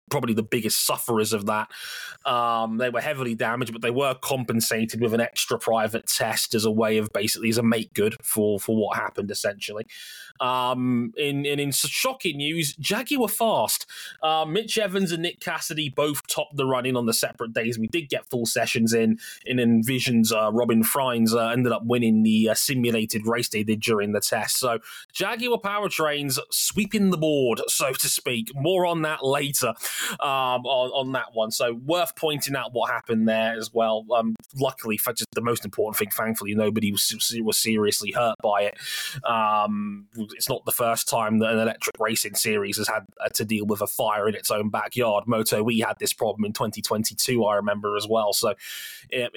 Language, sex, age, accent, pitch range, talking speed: English, male, 20-39, British, 110-145 Hz, 195 wpm